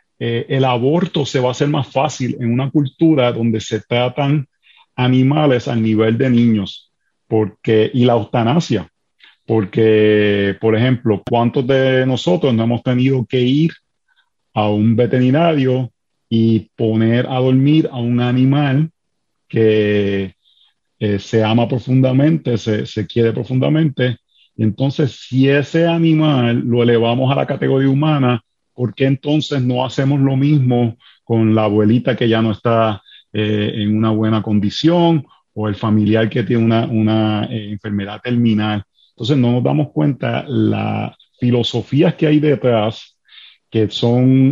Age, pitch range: 40-59, 110-135 Hz